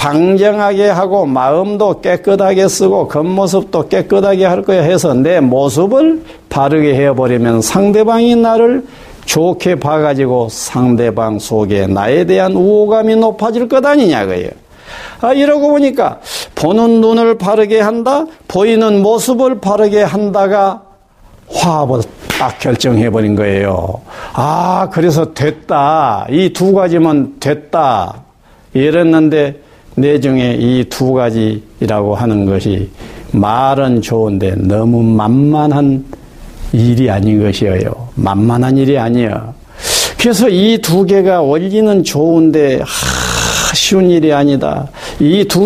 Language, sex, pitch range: Korean, male, 125-195 Hz